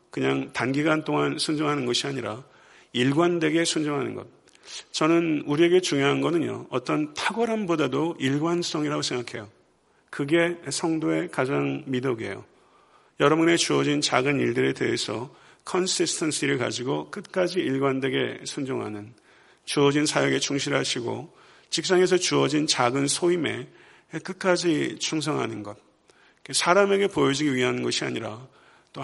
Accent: native